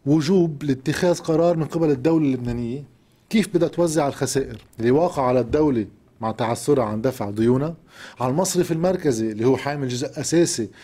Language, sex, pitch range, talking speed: Arabic, male, 120-160 Hz, 155 wpm